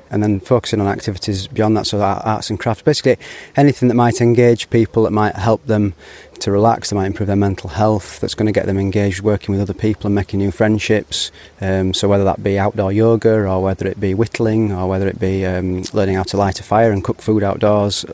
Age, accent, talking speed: 30-49, British, 230 wpm